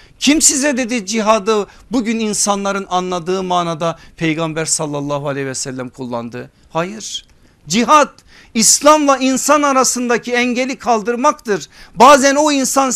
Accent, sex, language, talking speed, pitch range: native, male, Turkish, 110 wpm, 185-255 Hz